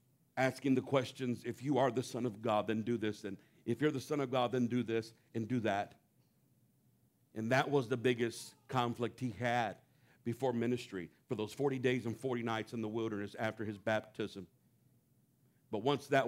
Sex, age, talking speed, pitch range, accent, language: male, 50-69, 190 wpm, 120-145 Hz, American, English